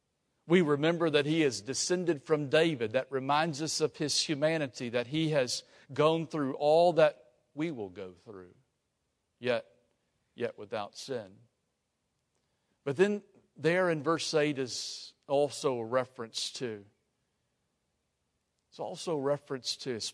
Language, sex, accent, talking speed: English, male, American, 135 wpm